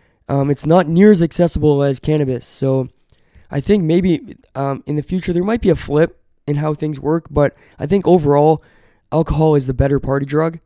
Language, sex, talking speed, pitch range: English, male, 195 wpm, 135-160 Hz